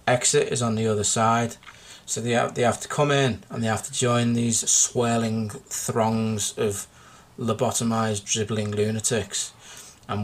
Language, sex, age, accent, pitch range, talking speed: English, male, 30-49, British, 110-125 Hz, 160 wpm